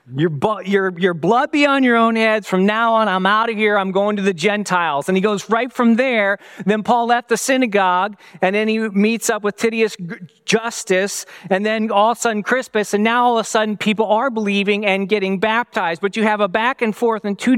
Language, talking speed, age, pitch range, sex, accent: English, 230 wpm, 40-59, 200-245 Hz, male, American